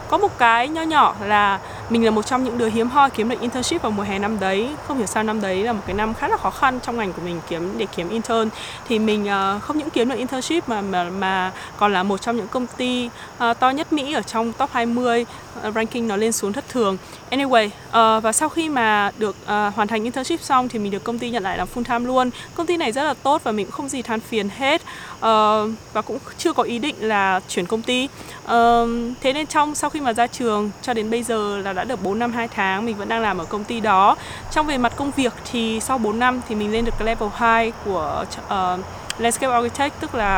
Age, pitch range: 20-39, 210-255 Hz